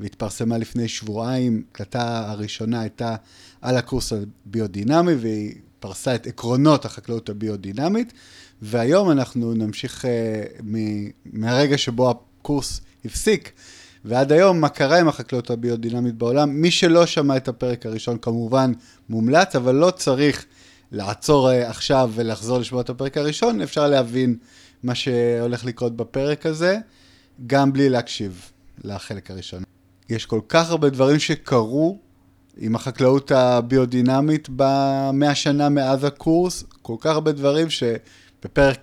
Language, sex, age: Hebrew, male, 30-49